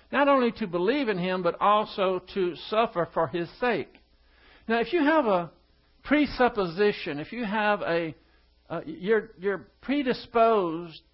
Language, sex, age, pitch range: English, male, 60-79, 165-225 Hz